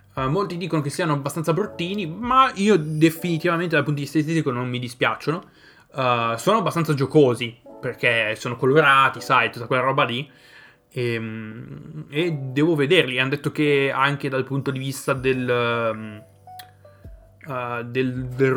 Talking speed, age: 140 wpm, 20-39